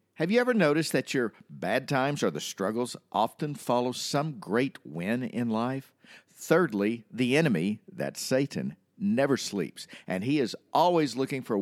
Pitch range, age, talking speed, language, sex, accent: 115-170 Hz, 50-69, 165 wpm, English, male, American